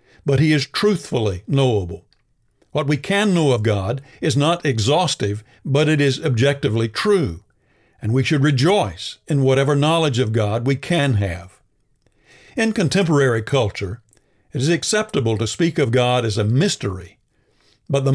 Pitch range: 110-145 Hz